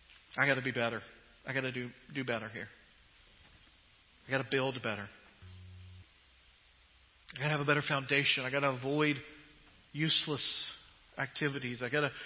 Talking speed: 130 wpm